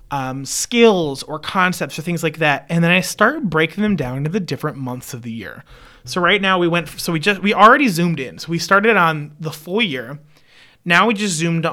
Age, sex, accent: 30-49, male, American